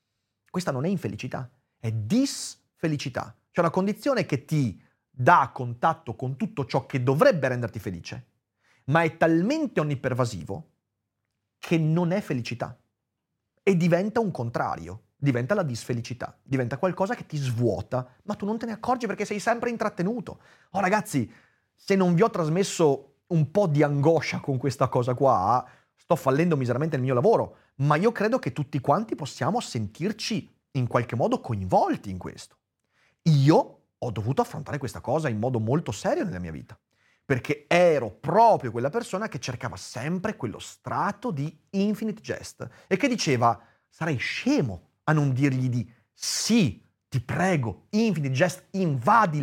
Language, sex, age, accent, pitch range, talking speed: Italian, male, 30-49, native, 120-180 Hz, 155 wpm